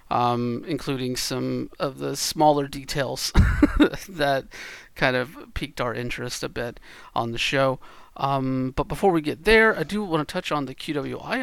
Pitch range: 130-150 Hz